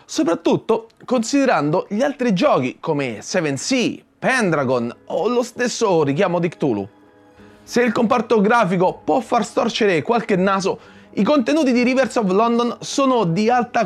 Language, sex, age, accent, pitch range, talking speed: Italian, male, 30-49, native, 175-255 Hz, 140 wpm